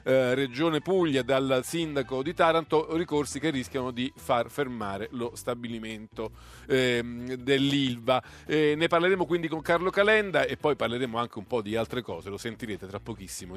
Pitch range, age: 120-165 Hz, 40-59